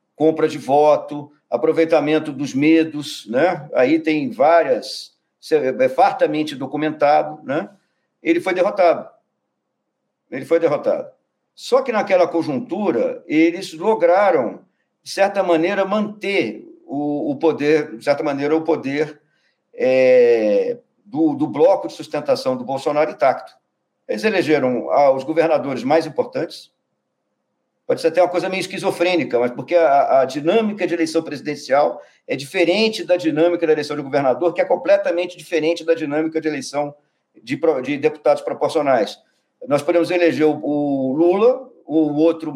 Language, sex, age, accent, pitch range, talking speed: Portuguese, male, 50-69, Brazilian, 150-220 Hz, 135 wpm